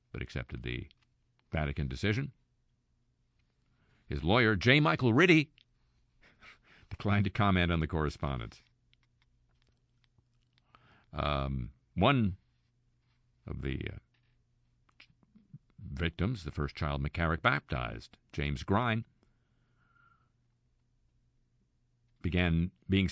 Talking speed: 80 wpm